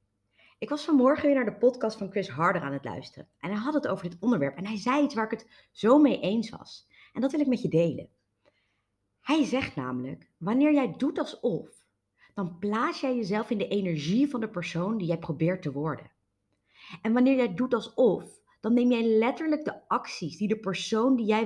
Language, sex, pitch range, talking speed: Dutch, female, 170-245 Hz, 215 wpm